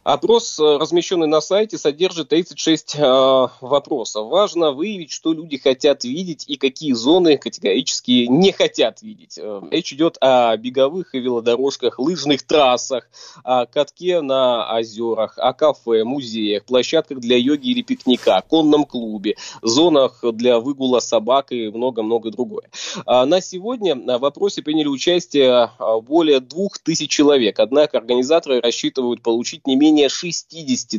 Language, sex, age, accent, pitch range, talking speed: Russian, male, 20-39, native, 125-175 Hz, 130 wpm